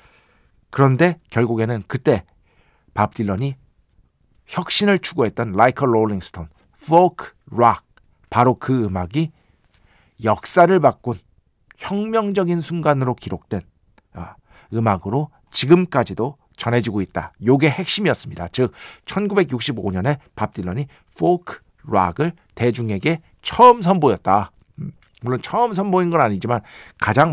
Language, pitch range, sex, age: Korean, 95-160 Hz, male, 50-69